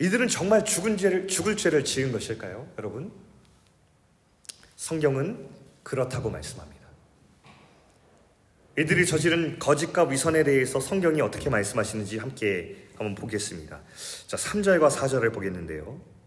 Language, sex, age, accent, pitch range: Korean, male, 30-49, native, 105-165 Hz